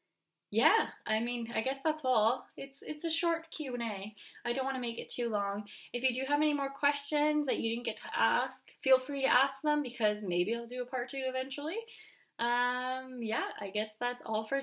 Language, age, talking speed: English, 20-39, 220 wpm